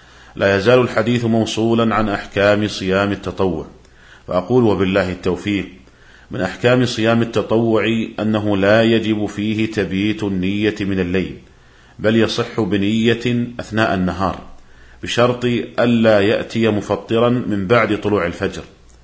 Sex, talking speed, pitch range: male, 115 wpm, 95-115 Hz